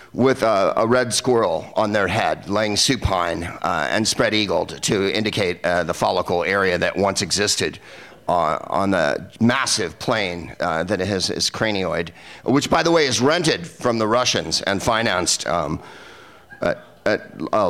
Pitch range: 115-150 Hz